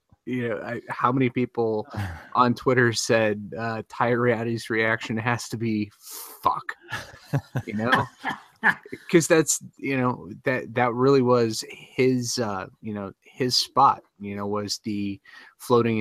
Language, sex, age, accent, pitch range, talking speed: English, male, 30-49, American, 100-120 Hz, 135 wpm